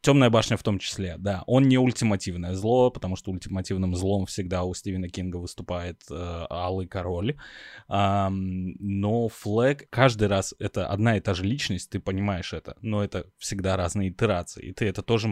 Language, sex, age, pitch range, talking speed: Russian, male, 20-39, 95-115 Hz, 175 wpm